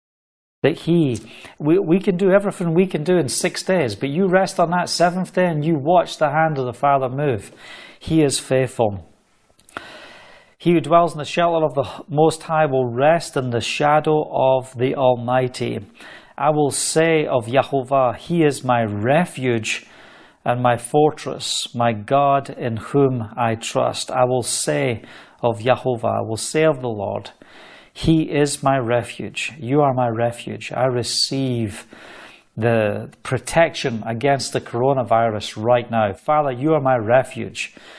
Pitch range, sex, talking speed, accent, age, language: 120-160 Hz, male, 160 wpm, British, 40-59, English